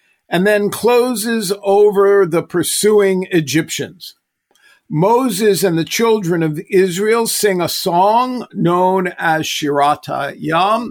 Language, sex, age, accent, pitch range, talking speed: English, male, 50-69, American, 160-205 Hz, 110 wpm